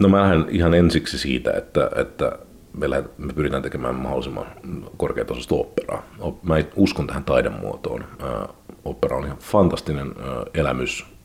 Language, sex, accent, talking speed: Finnish, male, native, 125 wpm